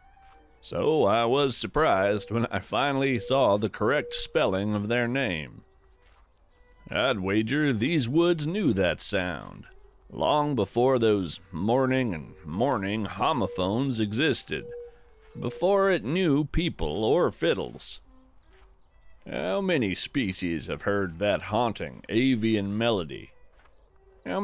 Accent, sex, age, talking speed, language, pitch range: American, male, 40-59, 110 wpm, English, 95-145 Hz